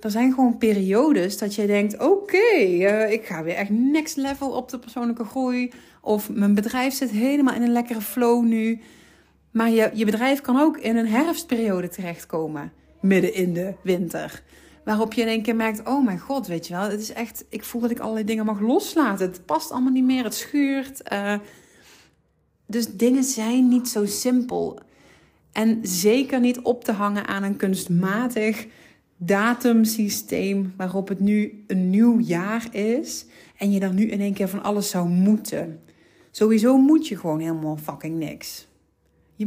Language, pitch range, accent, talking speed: Dutch, 195-245 Hz, Dutch, 180 wpm